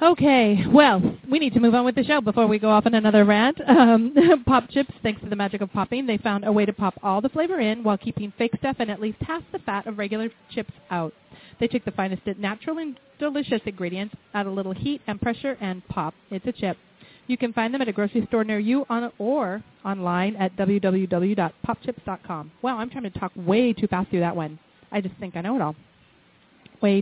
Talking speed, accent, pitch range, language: 225 wpm, American, 195-245 Hz, English